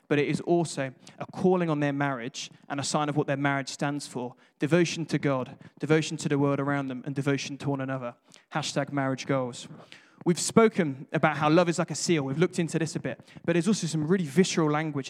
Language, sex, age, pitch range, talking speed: English, male, 20-39, 140-175 Hz, 225 wpm